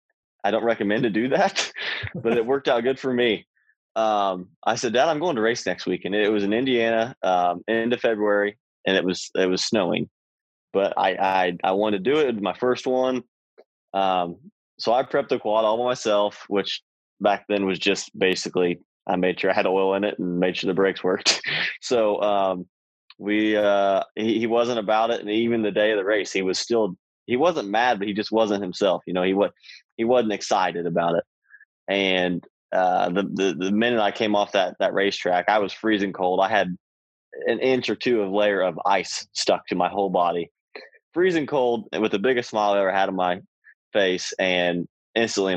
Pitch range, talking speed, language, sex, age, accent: 90-110 Hz, 210 wpm, English, male, 20-39, American